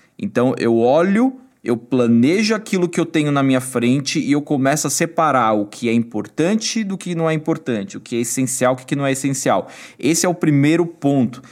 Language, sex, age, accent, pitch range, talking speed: Portuguese, male, 20-39, Brazilian, 120-145 Hz, 215 wpm